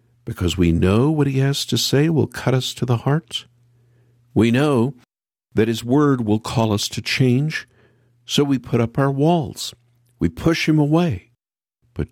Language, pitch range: English, 105-145 Hz